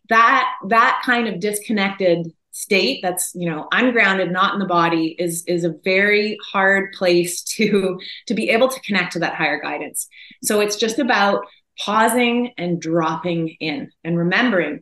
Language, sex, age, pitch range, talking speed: English, female, 30-49, 170-215 Hz, 160 wpm